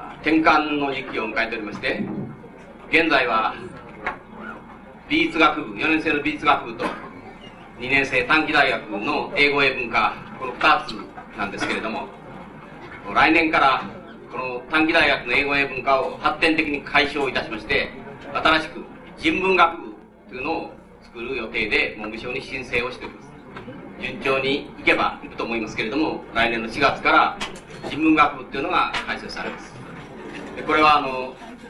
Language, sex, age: Japanese, male, 40-59